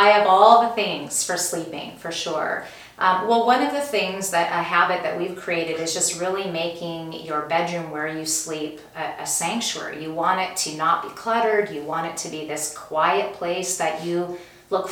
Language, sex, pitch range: English, female, 155-195 Hz